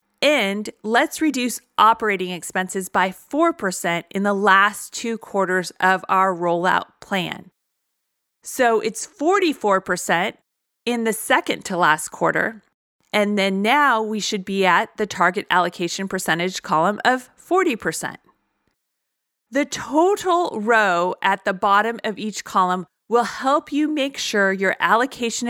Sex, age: female, 30-49